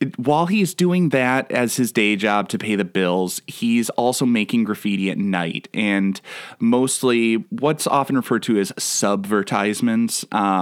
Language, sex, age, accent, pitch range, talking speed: English, male, 20-39, American, 100-140 Hz, 145 wpm